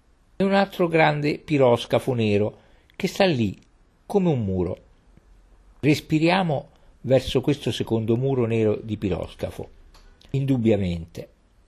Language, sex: Italian, male